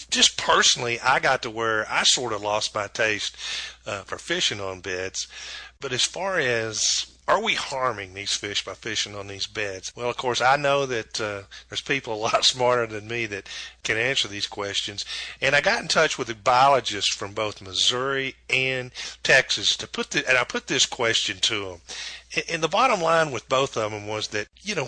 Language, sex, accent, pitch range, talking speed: English, male, American, 105-135 Hz, 205 wpm